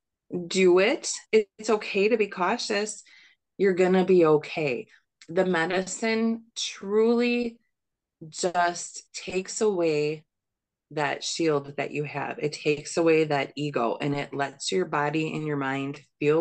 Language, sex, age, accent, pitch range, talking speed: English, female, 20-39, American, 155-200 Hz, 135 wpm